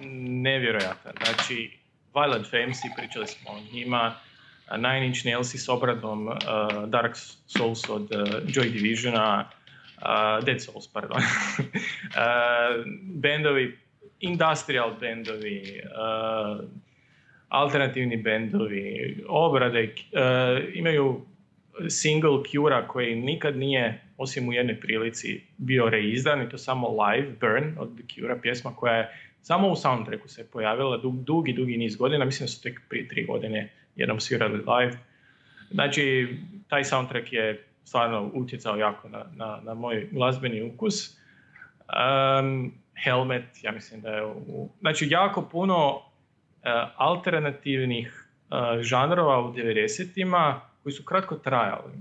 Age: 20-39